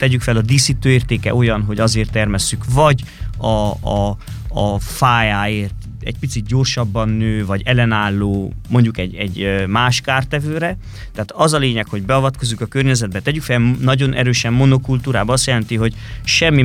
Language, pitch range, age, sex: Hungarian, 100-130 Hz, 30-49, male